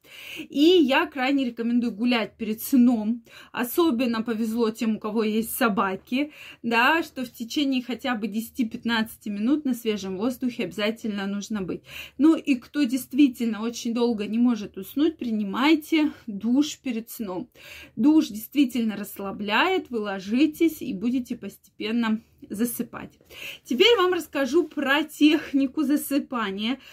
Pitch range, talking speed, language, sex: 220-285 Hz, 125 wpm, Russian, female